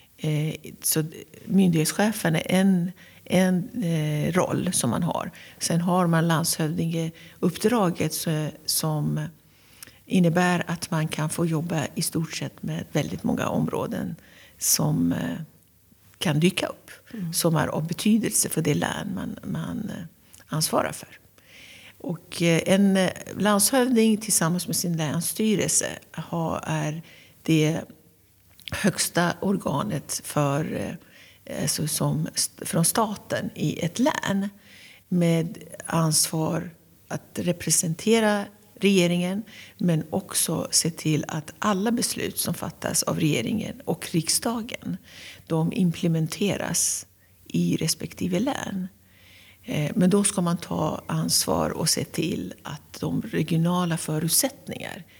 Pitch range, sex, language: 155-190 Hz, female, Swedish